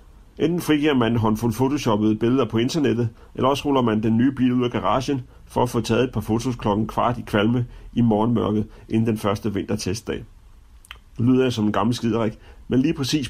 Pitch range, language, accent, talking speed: 105-120 Hz, Danish, native, 205 wpm